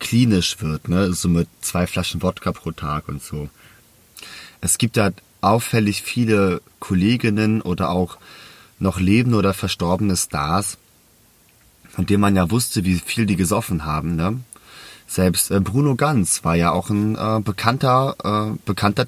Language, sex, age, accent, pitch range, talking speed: German, male, 30-49, German, 90-110 Hz, 155 wpm